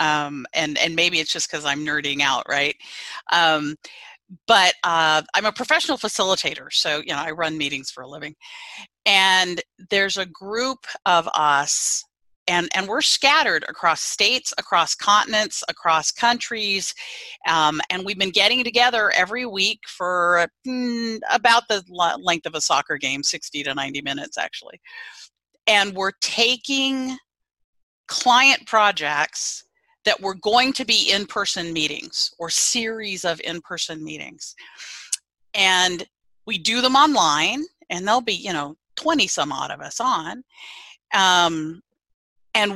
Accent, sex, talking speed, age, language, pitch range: American, female, 140 wpm, 40-59, English, 165-235 Hz